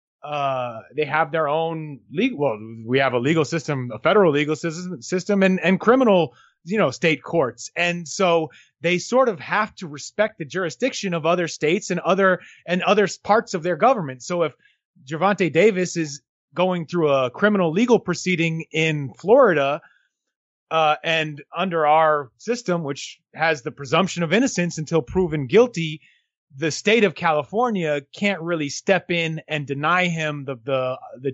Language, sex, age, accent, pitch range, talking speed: English, male, 30-49, American, 150-195 Hz, 165 wpm